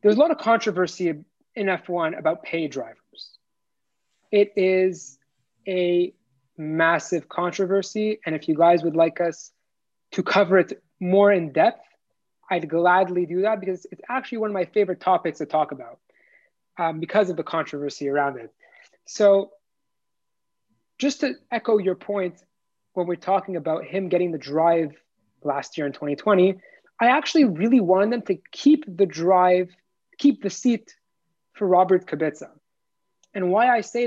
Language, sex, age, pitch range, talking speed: English, male, 30-49, 165-210 Hz, 155 wpm